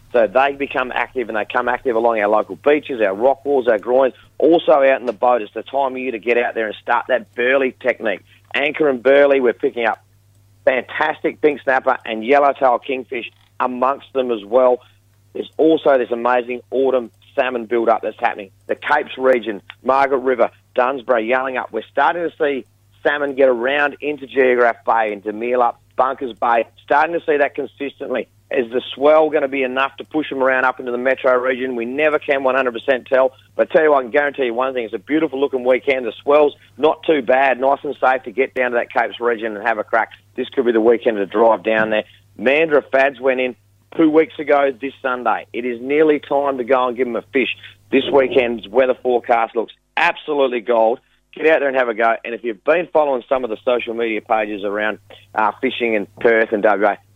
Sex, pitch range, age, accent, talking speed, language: male, 115-135 Hz, 40-59, Australian, 215 wpm, English